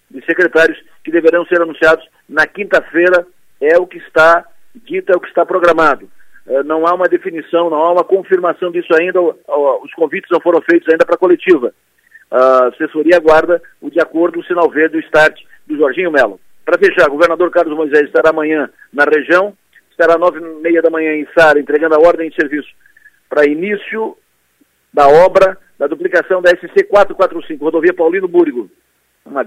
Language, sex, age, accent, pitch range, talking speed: Portuguese, male, 50-69, Brazilian, 160-215 Hz, 175 wpm